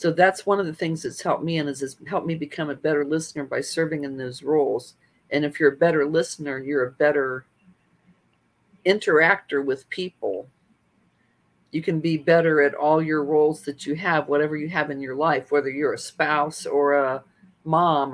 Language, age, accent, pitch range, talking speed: English, 50-69, American, 145-170 Hz, 190 wpm